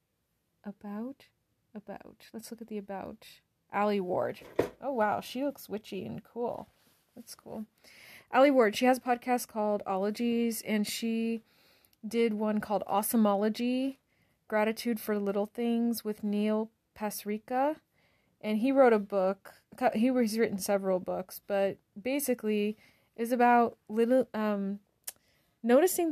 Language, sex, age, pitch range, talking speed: English, female, 30-49, 200-240 Hz, 130 wpm